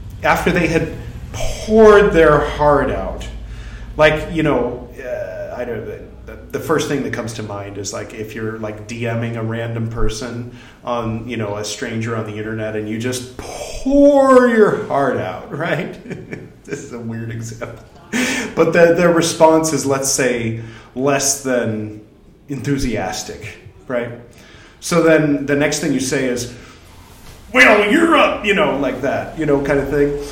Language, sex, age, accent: English, male, 30-49, American